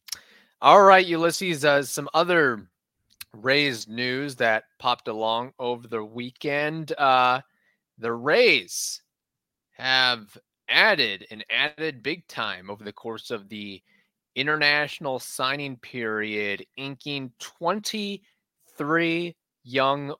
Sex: male